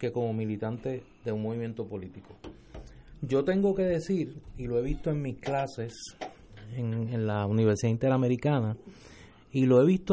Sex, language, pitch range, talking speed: male, Spanish, 115-155 Hz, 160 wpm